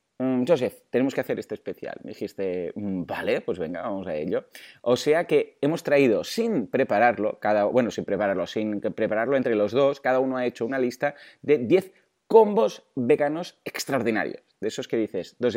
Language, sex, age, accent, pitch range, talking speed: Spanish, male, 30-49, Spanish, 105-165 Hz, 175 wpm